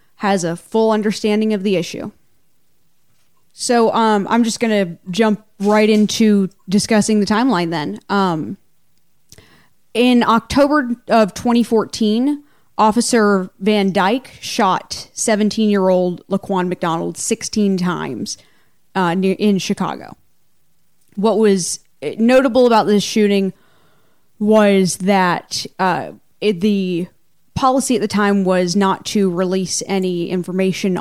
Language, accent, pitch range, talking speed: English, American, 180-215 Hz, 110 wpm